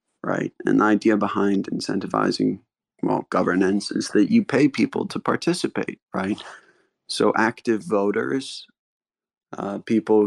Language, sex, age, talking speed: English, male, 20-39, 125 wpm